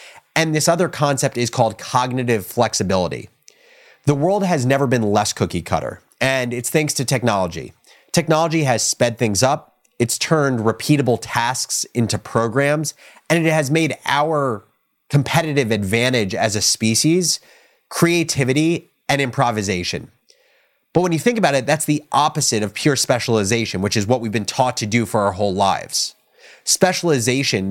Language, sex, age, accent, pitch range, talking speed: English, male, 30-49, American, 115-150 Hz, 150 wpm